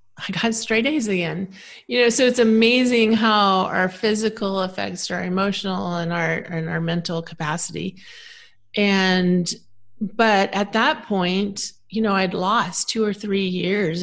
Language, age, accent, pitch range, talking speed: English, 30-49, American, 170-220 Hz, 150 wpm